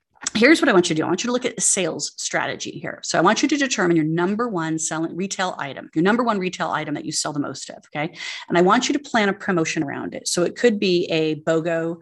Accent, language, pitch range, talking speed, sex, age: American, English, 160-200 Hz, 285 wpm, female, 30-49